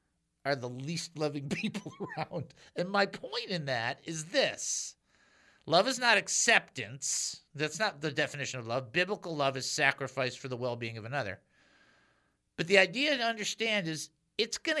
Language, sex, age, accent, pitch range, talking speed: English, male, 50-69, American, 145-215 Hz, 160 wpm